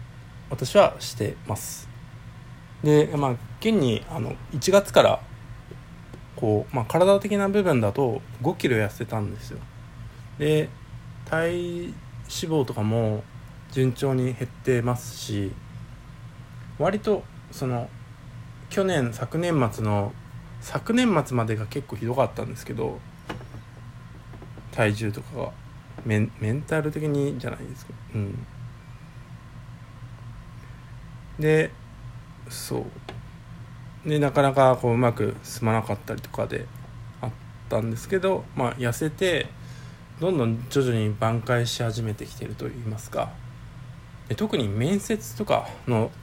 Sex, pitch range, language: male, 120-140 Hz, Japanese